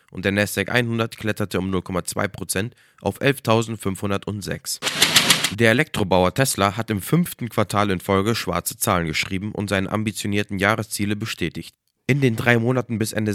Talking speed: 145 wpm